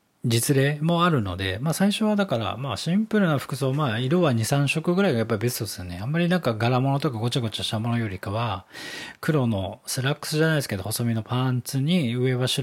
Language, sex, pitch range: Japanese, male, 110-165 Hz